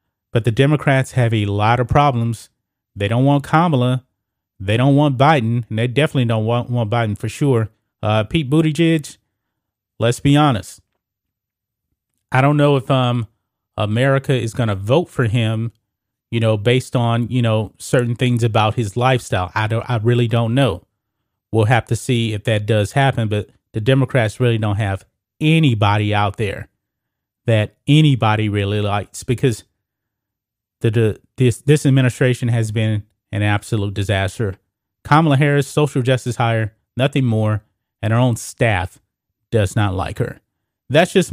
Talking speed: 155 wpm